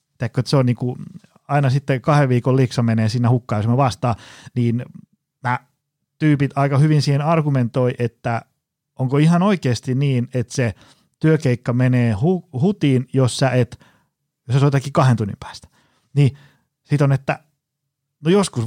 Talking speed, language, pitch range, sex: 150 wpm, Finnish, 120-150 Hz, male